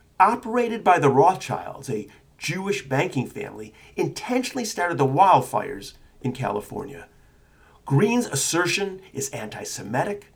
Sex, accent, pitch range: male, American, 130-195 Hz